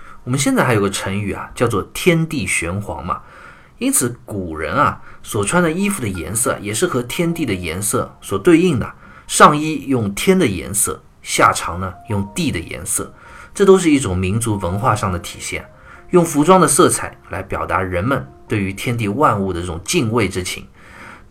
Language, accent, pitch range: Chinese, native, 95-130 Hz